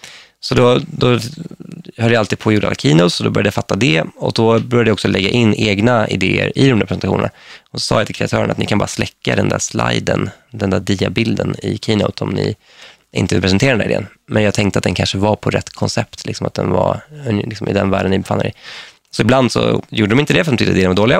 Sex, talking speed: male, 260 wpm